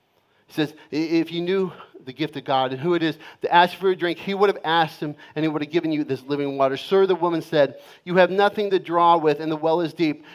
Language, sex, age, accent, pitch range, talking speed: English, male, 40-59, American, 120-170 Hz, 275 wpm